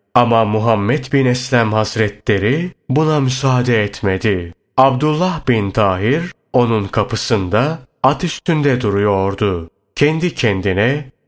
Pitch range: 105-135 Hz